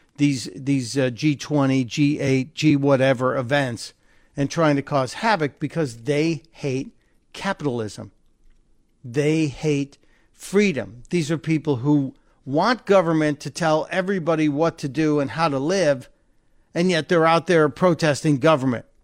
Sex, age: male, 50-69